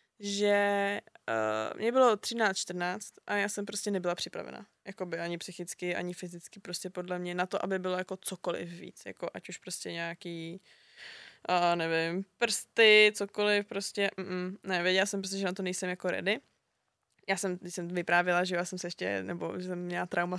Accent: native